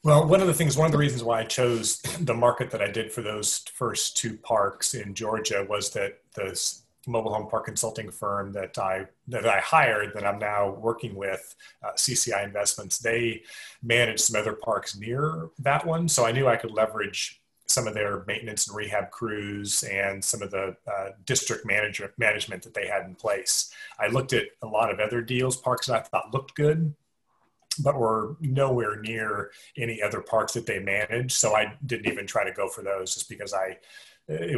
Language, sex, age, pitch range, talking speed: English, male, 30-49, 100-135 Hz, 200 wpm